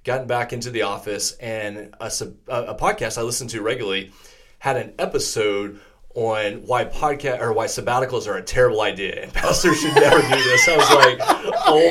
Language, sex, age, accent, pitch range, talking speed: English, male, 30-49, American, 105-150 Hz, 185 wpm